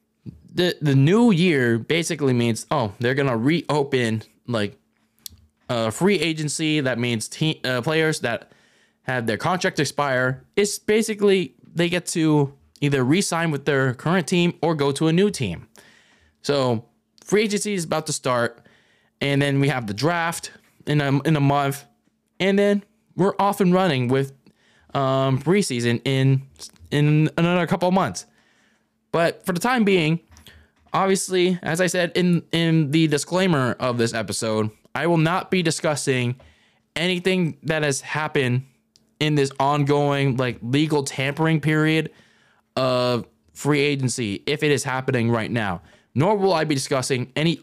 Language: English